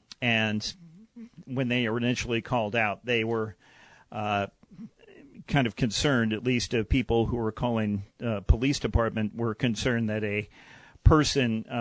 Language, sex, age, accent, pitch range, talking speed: English, male, 50-69, American, 115-140 Hz, 145 wpm